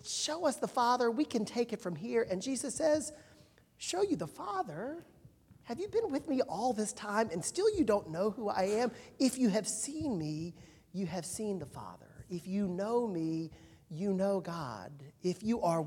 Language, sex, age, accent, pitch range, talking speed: English, male, 40-59, American, 160-225 Hz, 200 wpm